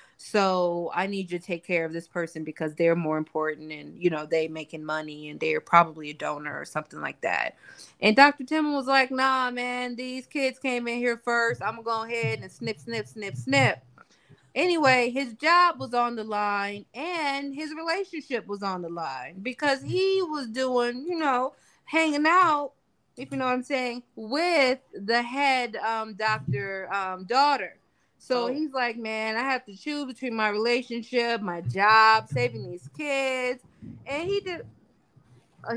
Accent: American